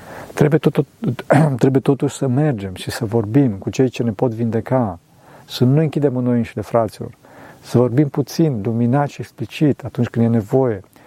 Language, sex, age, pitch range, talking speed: Romanian, male, 50-69, 115-140 Hz, 165 wpm